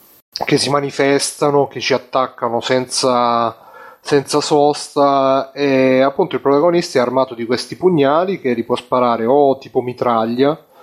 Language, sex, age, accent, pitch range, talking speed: Italian, male, 30-49, native, 115-140 Hz, 140 wpm